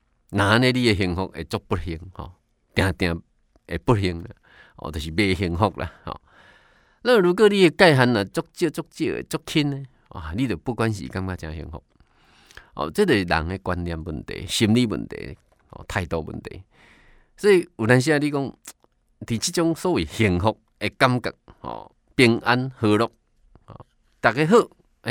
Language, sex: Chinese, male